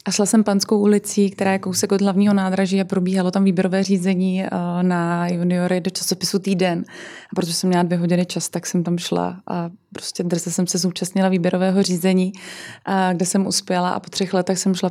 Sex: female